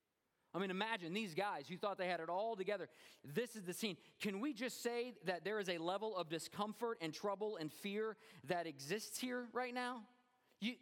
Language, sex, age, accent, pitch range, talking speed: English, male, 40-59, American, 130-210 Hz, 205 wpm